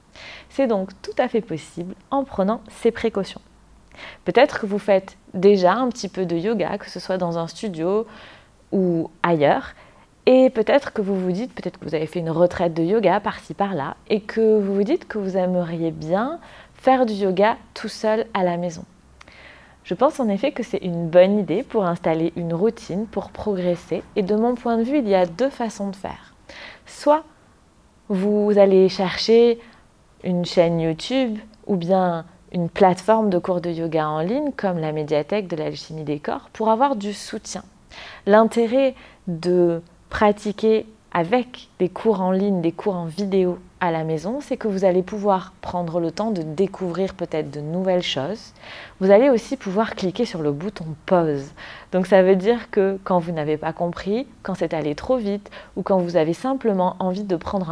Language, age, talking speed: French, 30-49, 185 wpm